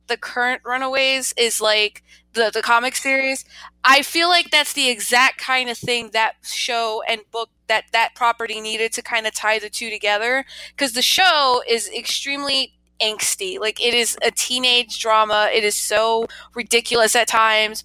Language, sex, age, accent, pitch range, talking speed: English, female, 20-39, American, 215-245 Hz, 170 wpm